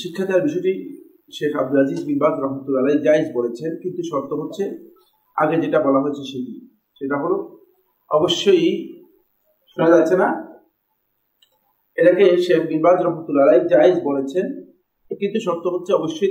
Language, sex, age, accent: Bengali, male, 50-69, native